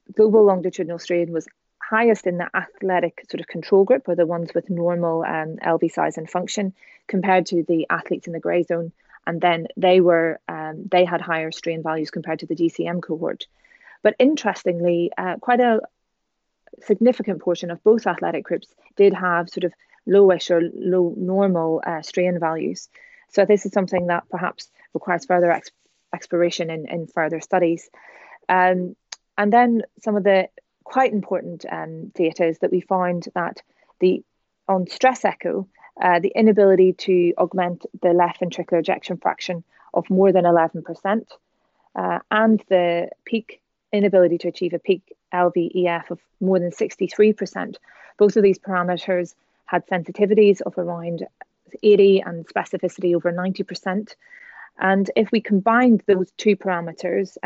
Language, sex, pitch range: English, female, 170-200 Hz